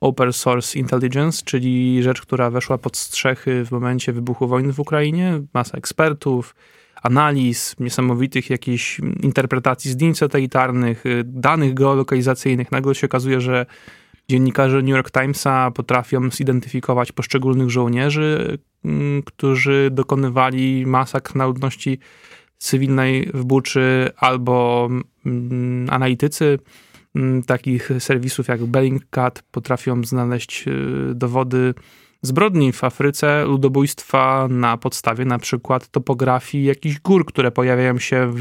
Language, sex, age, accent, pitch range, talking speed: Polish, male, 20-39, native, 125-135 Hz, 110 wpm